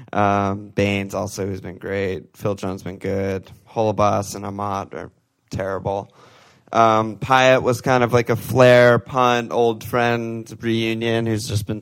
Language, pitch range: English, 100-120 Hz